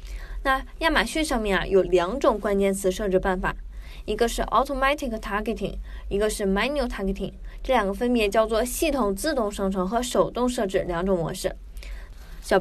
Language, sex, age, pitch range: Chinese, female, 20-39, 190-265 Hz